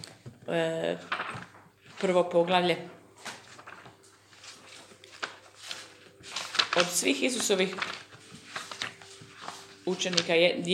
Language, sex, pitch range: Croatian, female, 165-245 Hz